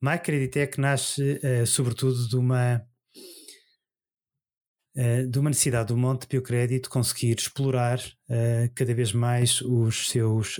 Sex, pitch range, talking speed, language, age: male, 120-130 Hz, 125 wpm, Portuguese, 20-39